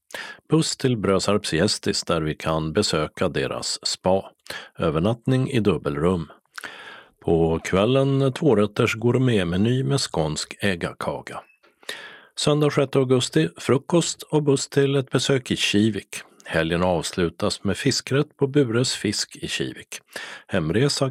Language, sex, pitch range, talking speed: Swedish, male, 90-135 Hz, 115 wpm